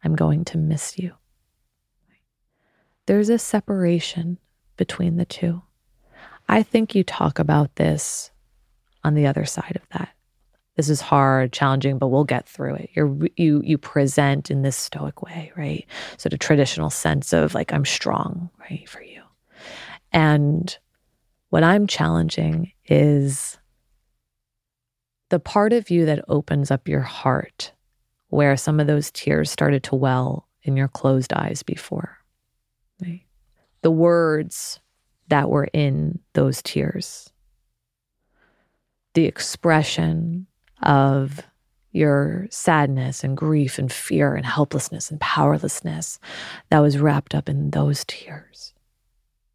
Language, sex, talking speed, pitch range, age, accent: English, female, 130 wpm, 135-170 Hz, 30-49, American